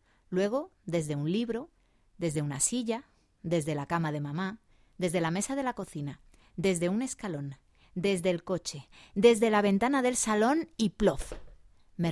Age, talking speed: 30-49, 160 wpm